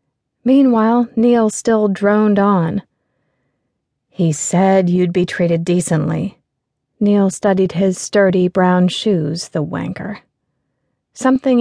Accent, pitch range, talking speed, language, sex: American, 180-215 Hz, 105 wpm, English, female